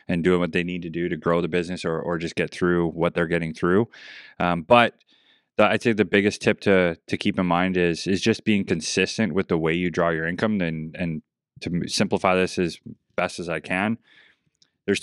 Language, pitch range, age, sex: English, 85-105 Hz, 20-39, male